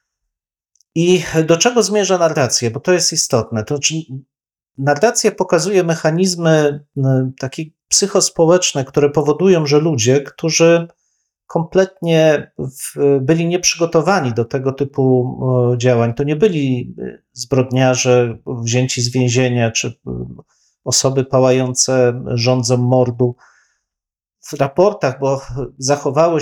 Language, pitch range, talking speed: Polish, 130-160 Hz, 100 wpm